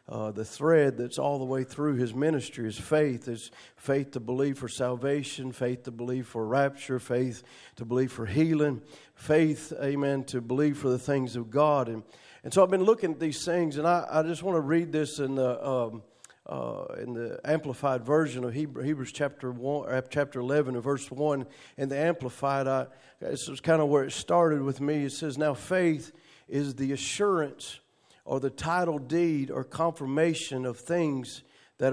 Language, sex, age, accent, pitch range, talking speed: English, male, 40-59, American, 130-160 Hz, 190 wpm